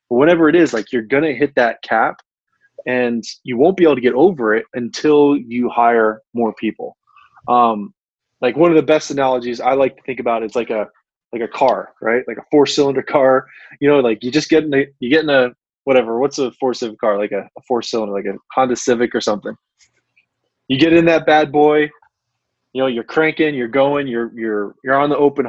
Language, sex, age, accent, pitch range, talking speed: English, male, 20-39, American, 120-150 Hz, 220 wpm